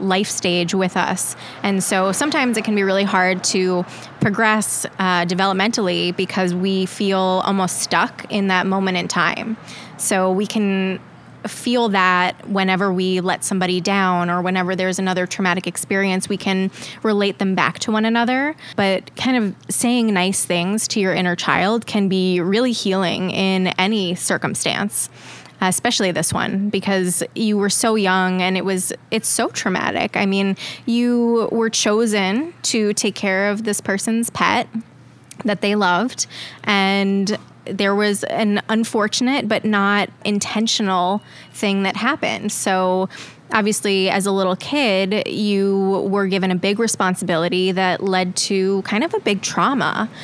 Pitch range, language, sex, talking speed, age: 185-215 Hz, English, female, 150 wpm, 20-39